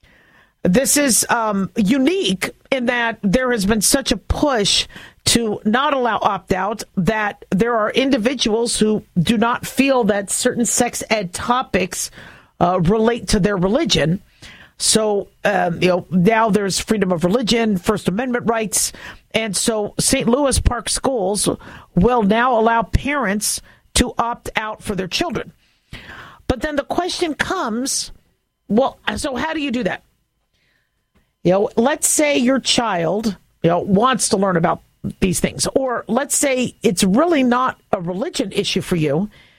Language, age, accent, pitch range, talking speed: English, 50-69, American, 195-255 Hz, 150 wpm